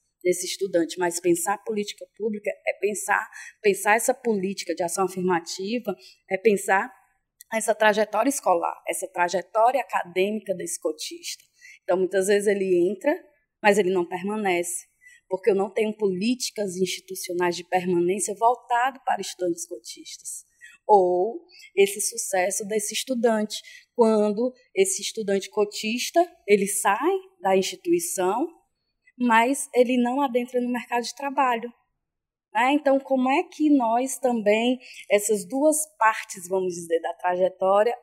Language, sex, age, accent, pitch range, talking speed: Portuguese, female, 20-39, Brazilian, 185-250 Hz, 125 wpm